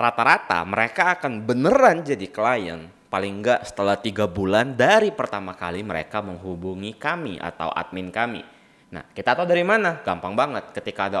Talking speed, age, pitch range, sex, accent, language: 155 wpm, 20-39, 95-115 Hz, male, native, Indonesian